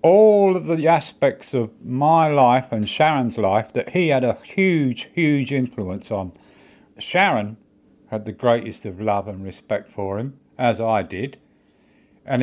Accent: British